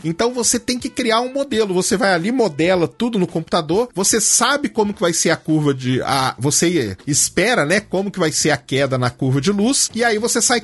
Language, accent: Portuguese, Brazilian